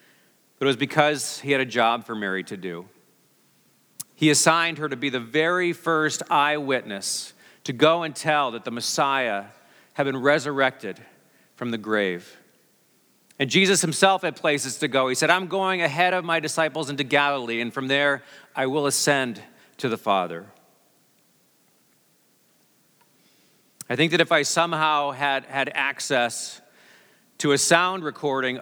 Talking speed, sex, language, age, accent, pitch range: 155 wpm, male, English, 40-59, American, 120-155 Hz